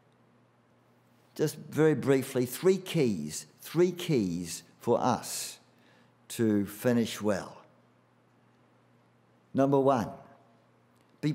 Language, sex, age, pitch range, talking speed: English, male, 50-69, 125-160 Hz, 80 wpm